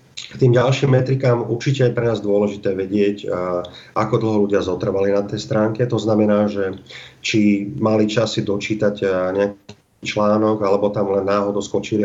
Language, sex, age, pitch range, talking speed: Slovak, male, 40-59, 100-115 Hz, 160 wpm